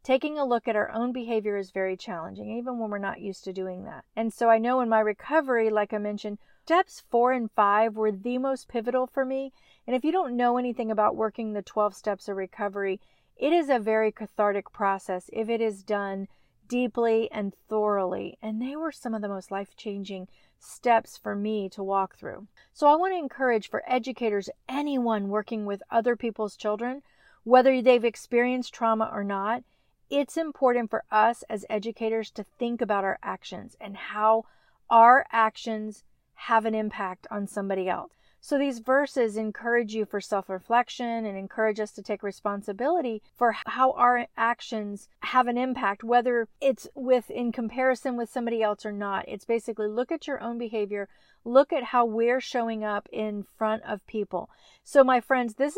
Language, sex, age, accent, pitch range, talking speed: English, female, 40-59, American, 210-250 Hz, 180 wpm